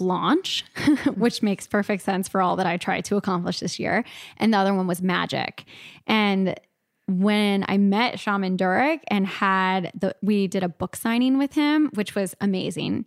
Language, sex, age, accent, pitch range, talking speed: English, female, 10-29, American, 190-230 Hz, 180 wpm